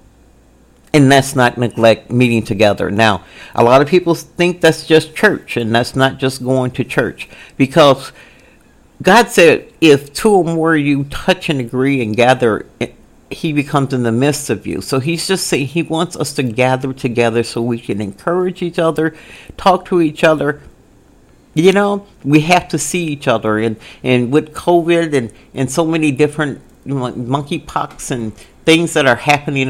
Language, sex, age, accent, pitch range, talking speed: English, male, 50-69, American, 115-150 Hz, 175 wpm